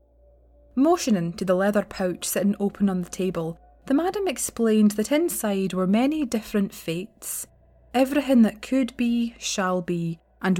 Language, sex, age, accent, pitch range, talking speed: English, female, 20-39, British, 175-245 Hz, 145 wpm